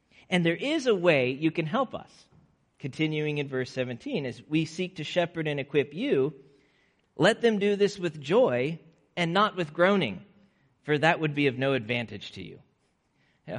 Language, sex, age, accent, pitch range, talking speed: English, male, 40-59, American, 130-165 Hz, 180 wpm